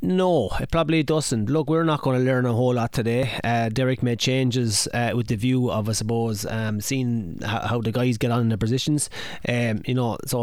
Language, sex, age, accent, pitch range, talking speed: English, male, 20-39, Irish, 120-135 Hz, 230 wpm